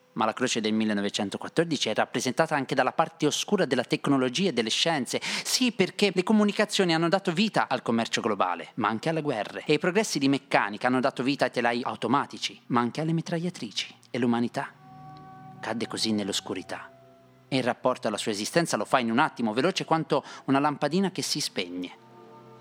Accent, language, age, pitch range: native, Italian, 30-49, 115-155 Hz